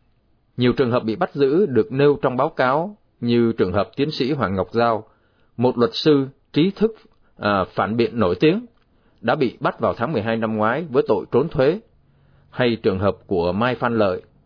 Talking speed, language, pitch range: 200 wpm, Vietnamese, 100-120 Hz